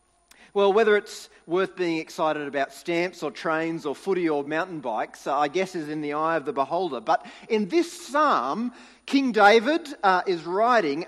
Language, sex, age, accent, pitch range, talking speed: English, male, 40-59, Australian, 165-230 Hz, 180 wpm